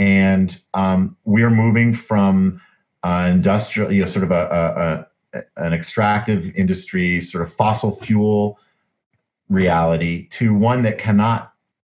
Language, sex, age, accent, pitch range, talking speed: English, male, 40-59, American, 85-105 Hz, 135 wpm